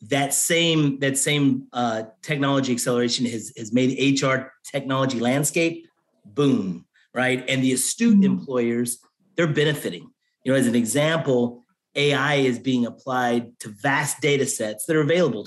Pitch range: 125-155 Hz